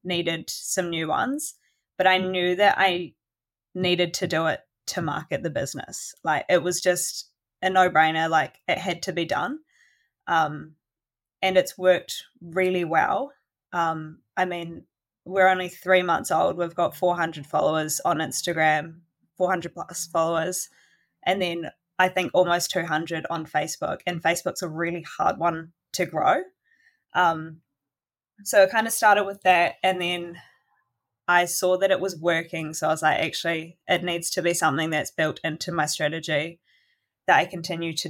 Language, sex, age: English, female, 20-39